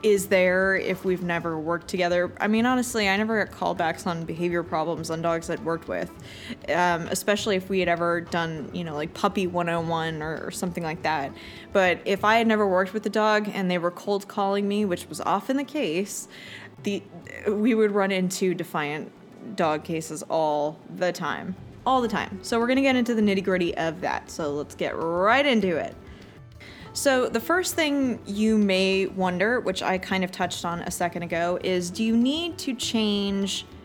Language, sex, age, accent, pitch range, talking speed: English, female, 20-39, American, 175-210 Hz, 195 wpm